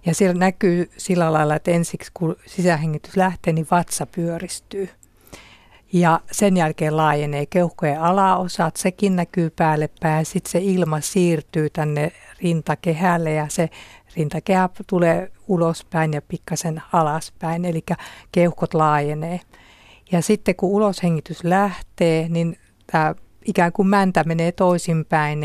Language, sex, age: Finnish, female, 50-69